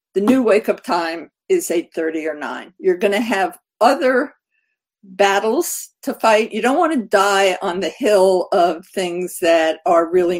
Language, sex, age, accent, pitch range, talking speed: English, female, 50-69, American, 175-245 Hz, 165 wpm